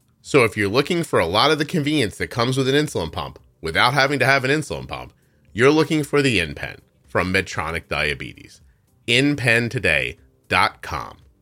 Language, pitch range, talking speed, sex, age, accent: English, 105-140 Hz, 170 wpm, male, 30-49, American